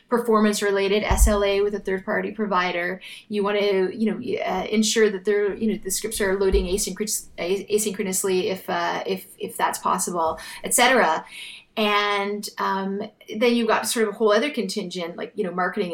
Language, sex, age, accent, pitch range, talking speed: English, female, 30-49, American, 185-225 Hz, 175 wpm